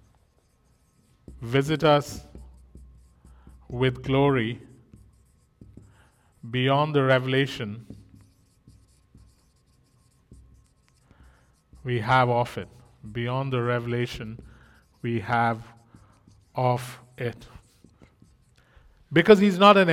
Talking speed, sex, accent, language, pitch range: 65 wpm, male, Indian, English, 120-175 Hz